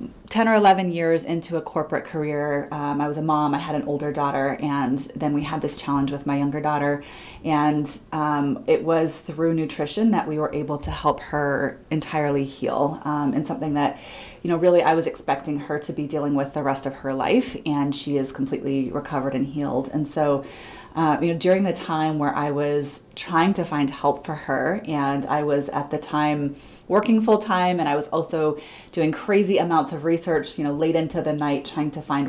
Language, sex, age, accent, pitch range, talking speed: English, female, 30-49, American, 145-165 Hz, 210 wpm